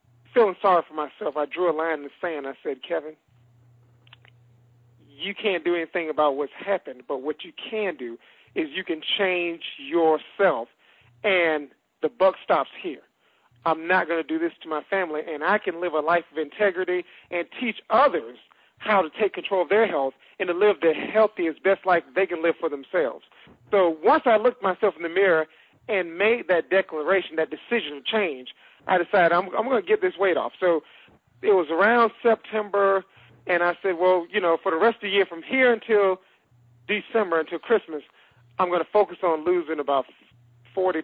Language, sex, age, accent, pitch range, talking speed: English, male, 40-59, American, 155-195 Hz, 195 wpm